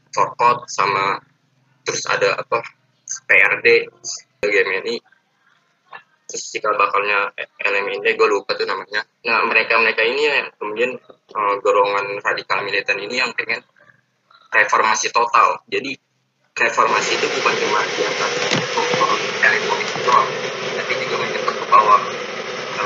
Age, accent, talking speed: 20-39, native, 120 wpm